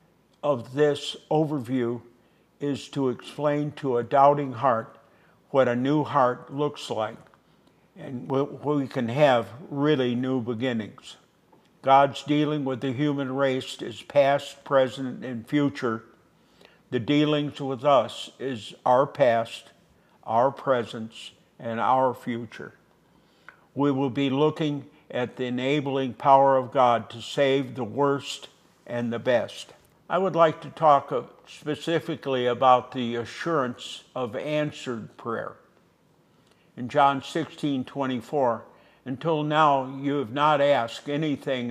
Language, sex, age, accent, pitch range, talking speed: English, male, 60-79, American, 125-150 Hz, 125 wpm